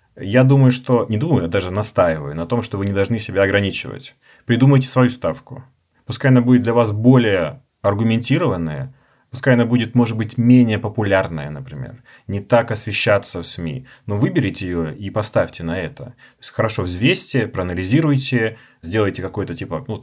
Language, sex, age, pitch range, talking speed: Russian, male, 30-49, 95-130 Hz, 165 wpm